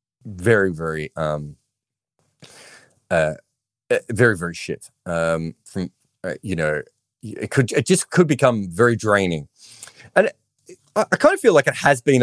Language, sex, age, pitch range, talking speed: English, male, 30-49, 90-130 Hz, 150 wpm